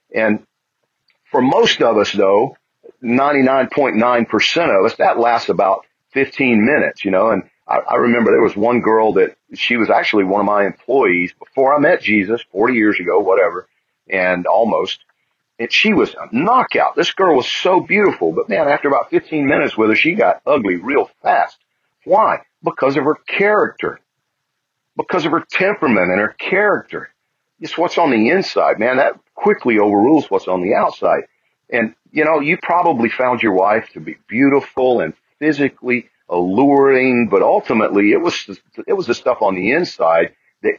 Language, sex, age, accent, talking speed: English, male, 40-59, American, 170 wpm